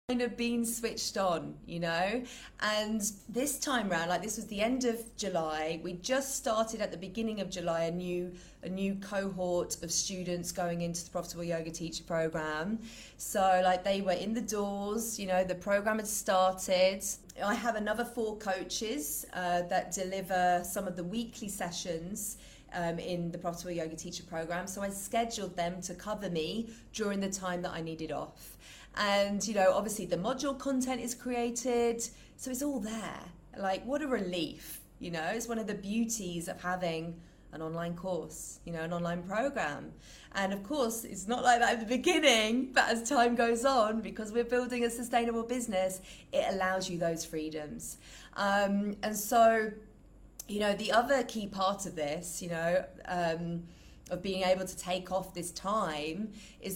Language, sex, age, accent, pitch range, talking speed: English, female, 30-49, British, 175-225 Hz, 180 wpm